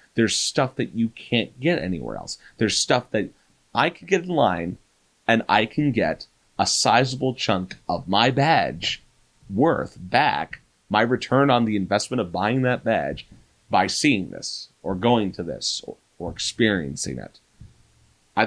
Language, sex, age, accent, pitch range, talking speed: English, male, 30-49, American, 95-125 Hz, 160 wpm